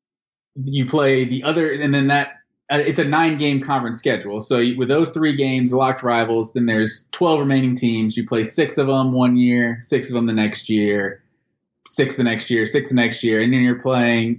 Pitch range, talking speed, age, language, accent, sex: 120-150 Hz, 215 wpm, 20-39, English, American, male